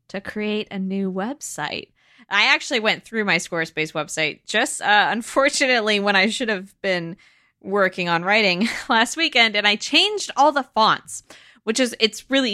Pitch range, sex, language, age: 175-245 Hz, female, English, 20-39